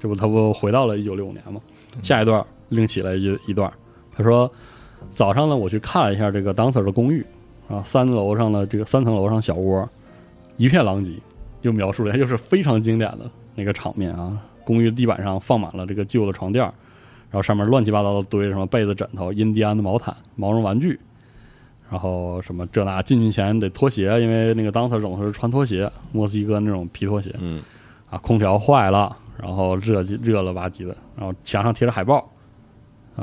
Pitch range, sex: 100-115 Hz, male